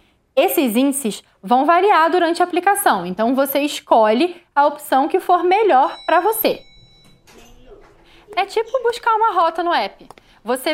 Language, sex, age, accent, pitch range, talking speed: Portuguese, female, 20-39, Brazilian, 215-350 Hz, 140 wpm